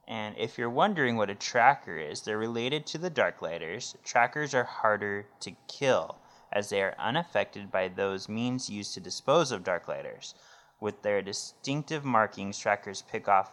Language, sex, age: English, male, 20-39